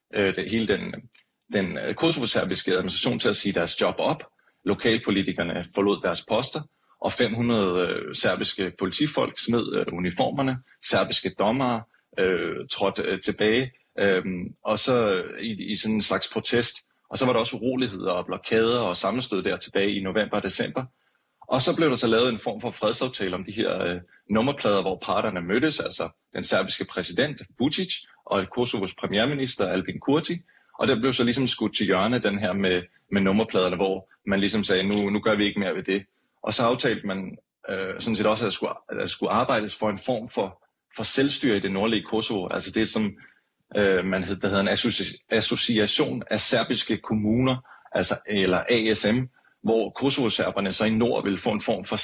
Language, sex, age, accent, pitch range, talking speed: Danish, male, 30-49, native, 95-125 Hz, 175 wpm